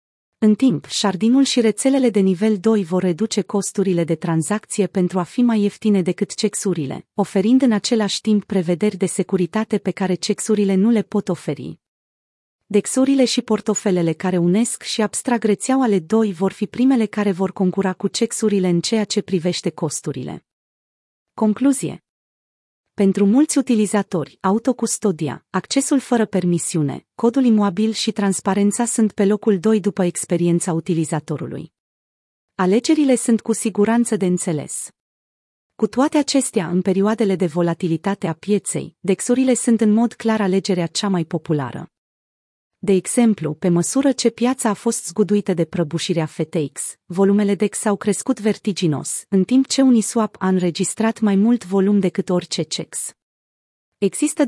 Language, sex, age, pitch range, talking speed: Romanian, female, 30-49, 180-225 Hz, 145 wpm